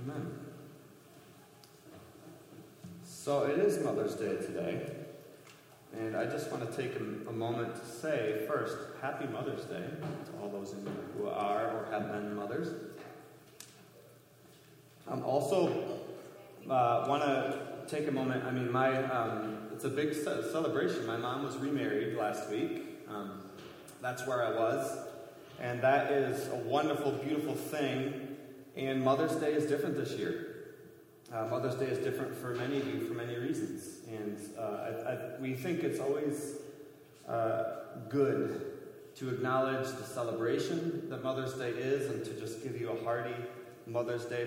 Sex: male